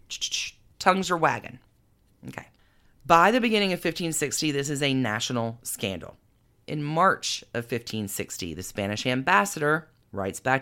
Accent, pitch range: American, 120-170 Hz